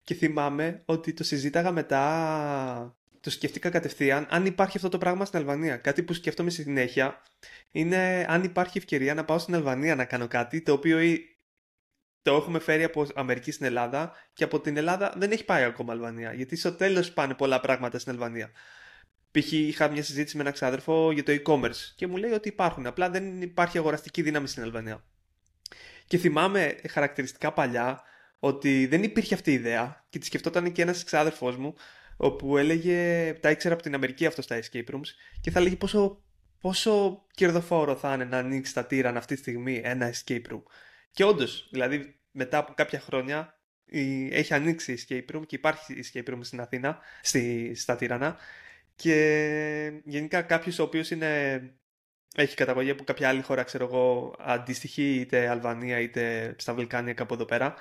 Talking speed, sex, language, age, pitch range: 175 wpm, male, Greek, 20-39, 130-165 Hz